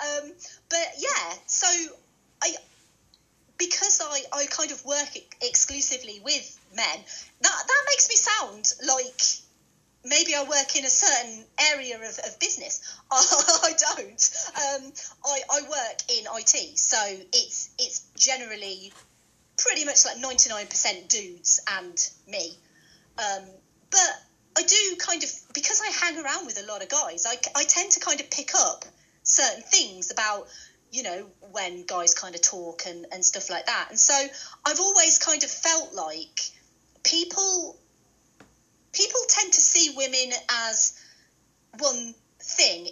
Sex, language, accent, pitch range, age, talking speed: female, English, British, 215-330 Hz, 30-49, 145 wpm